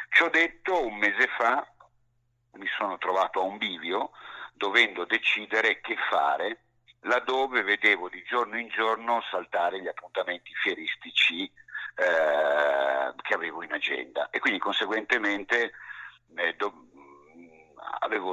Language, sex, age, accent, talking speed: Italian, male, 50-69, native, 120 wpm